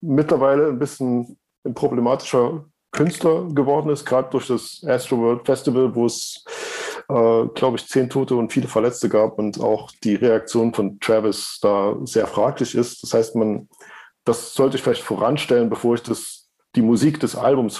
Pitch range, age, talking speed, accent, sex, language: 110-135 Hz, 50-69, 170 wpm, German, male, German